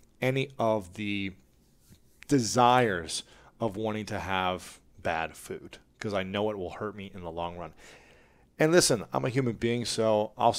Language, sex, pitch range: English, male, 90-110 Hz